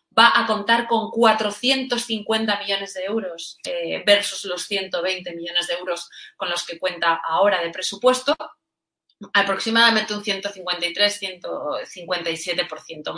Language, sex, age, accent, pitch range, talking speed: Spanish, female, 20-39, Spanish, 180-220 Hz, 115 wpm